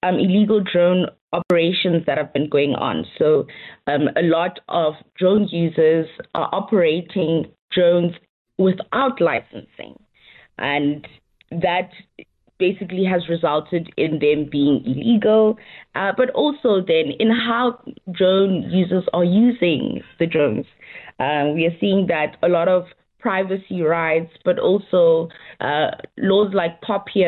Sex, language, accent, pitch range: female, English, South African, 155-195 Hz